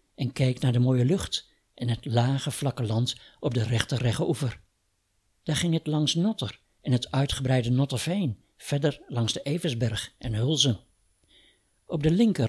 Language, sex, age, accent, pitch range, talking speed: Dutch, male, 60-79, Dutch, 115-150 Hz, 160 wpm